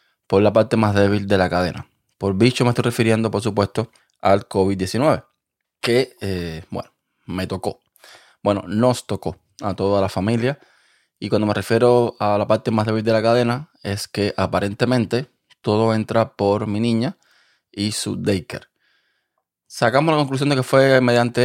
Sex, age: male, 20-39